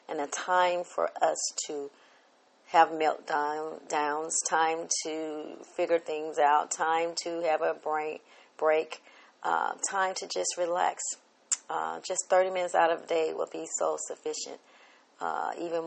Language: English